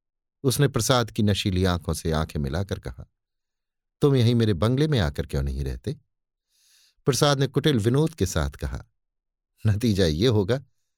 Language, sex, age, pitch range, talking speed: Hindi, male, 50-69, 90-130 Hz, 155 wpm